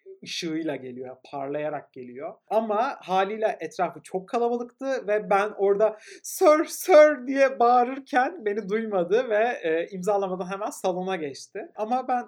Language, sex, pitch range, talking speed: Turkish, male, 170-220 Hz, 125 wpm